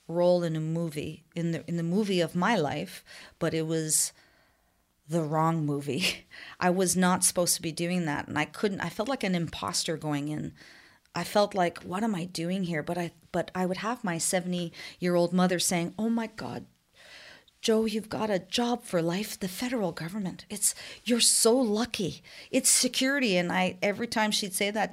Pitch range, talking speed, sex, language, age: 160-205 Hz, 195 wpm, female, English, 40-59